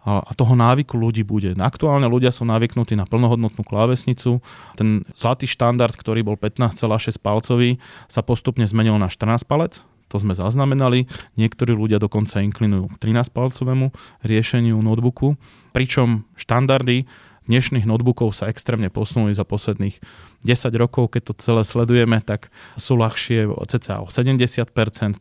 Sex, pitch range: male, 110-130 Hz